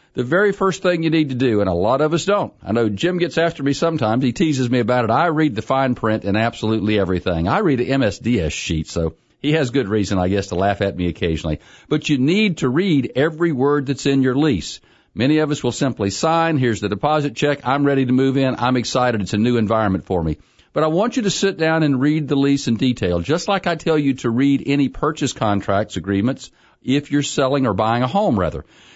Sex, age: male, 50-69